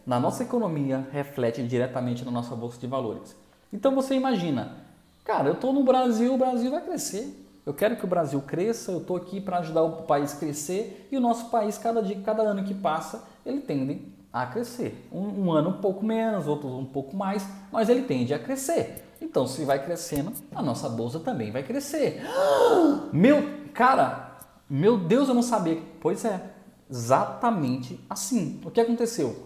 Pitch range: 135-225 Hz